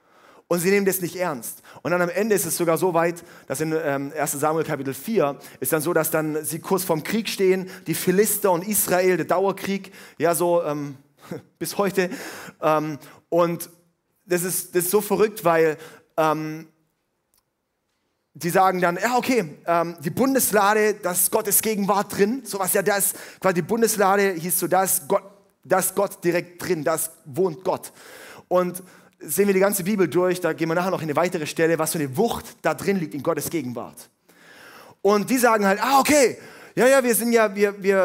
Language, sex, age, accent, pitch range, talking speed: German, male, 30-49, German, 160-205 Hz, 190 wpm